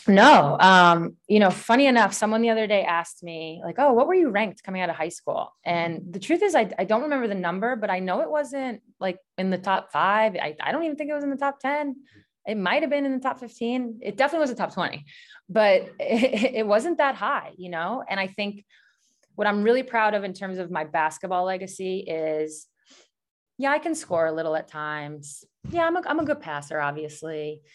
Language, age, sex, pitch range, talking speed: English, 20-39, female, 160-230 Hz, 230 wpm